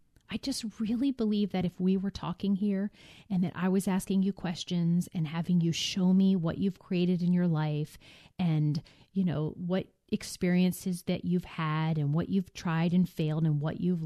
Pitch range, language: 165-205 Hz, English